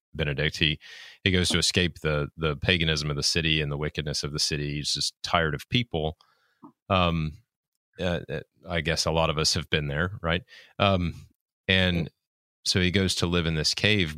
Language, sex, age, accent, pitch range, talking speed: English, male, 30-49, American, 75-90 Hz, 190 wpm